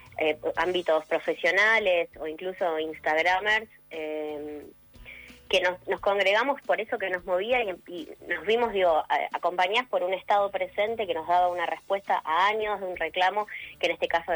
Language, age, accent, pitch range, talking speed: Spanish, 20-39, Argentinian, 165-215 Hz, 165 wpm